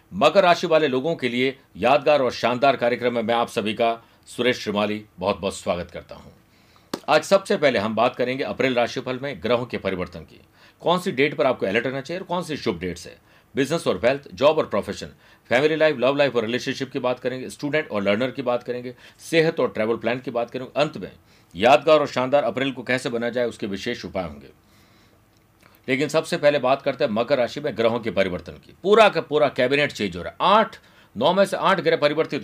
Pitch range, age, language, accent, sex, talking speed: 115-150 Hz, 50-69, Hindi, native, male, 220 wpm